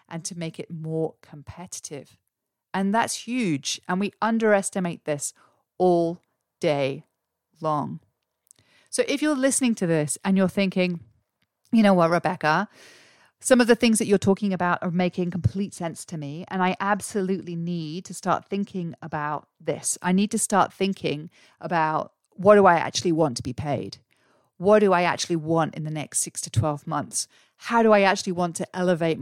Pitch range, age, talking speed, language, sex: 160-195 Hz, 40-59, 175 wpm, English, female